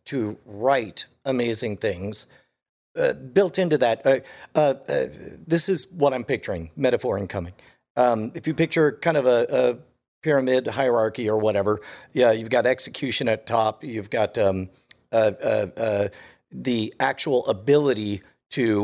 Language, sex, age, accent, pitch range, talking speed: English, male, 50-69, American, 110-145 Hz, 145 wpm